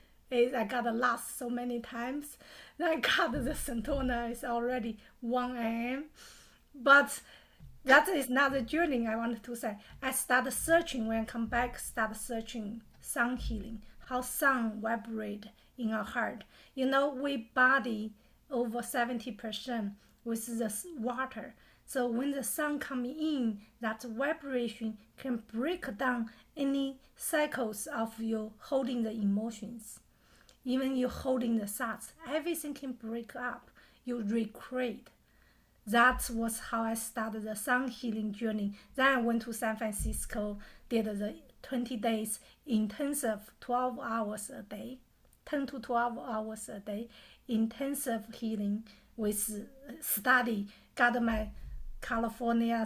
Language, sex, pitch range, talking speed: English, female, 225-260 Hz, 130 wpm